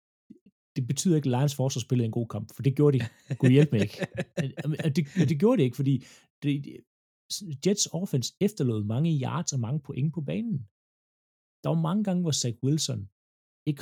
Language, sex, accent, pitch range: Danish, male, native, 105-140 Hz